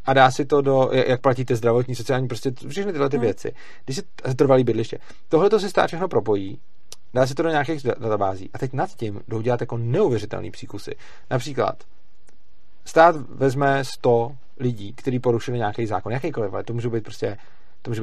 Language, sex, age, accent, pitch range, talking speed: Czech, male, 40-59, native, 115-135 Hz, 180 wpm